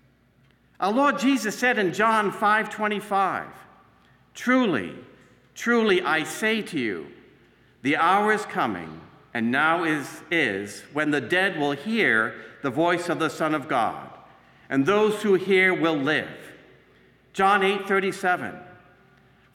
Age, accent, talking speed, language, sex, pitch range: 50-69, American, 125 wpm, English, male, 175-215 Hz